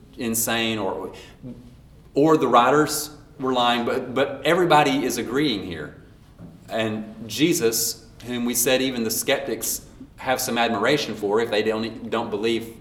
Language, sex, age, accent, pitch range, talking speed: English, male, 30-49, American, 115-140 Hz, 140 wpm